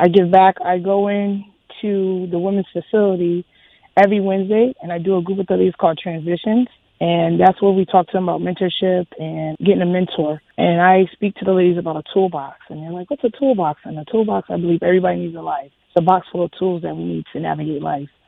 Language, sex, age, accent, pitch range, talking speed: English, female, 20-39, American, 160-190 Hz, 235 wpm